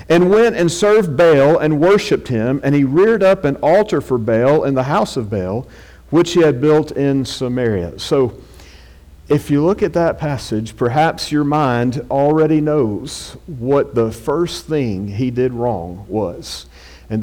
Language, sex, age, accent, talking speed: English, male, 50-69, American, 165 wpm